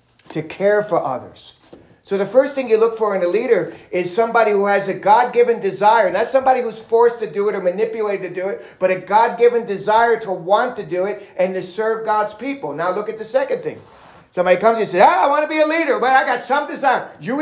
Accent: American